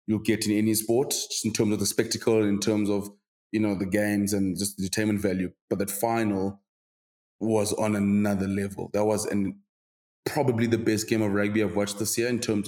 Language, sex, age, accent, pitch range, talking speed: English, male, 20-39, South African, 105-120 Hz, 215 wpm